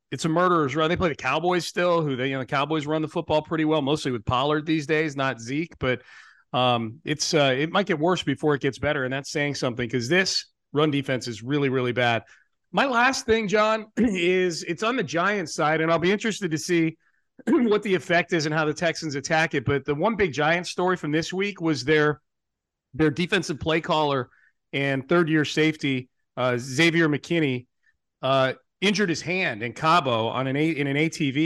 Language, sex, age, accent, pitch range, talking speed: English, male, 40-59, American, 140-180 Hz, 210 wpm